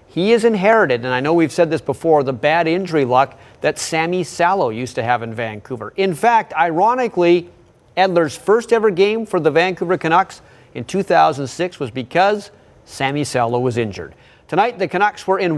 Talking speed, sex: 175 wpm, male